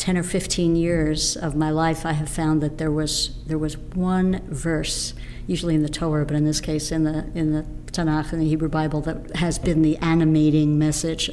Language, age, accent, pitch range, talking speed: English, 60-79, American, 155-170 Hz, 210 wpm